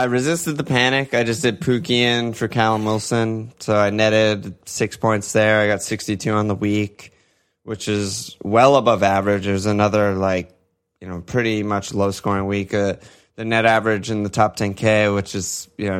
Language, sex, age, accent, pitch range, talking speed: English, male, 20-39, American, 100-110 Hz, 185 wpm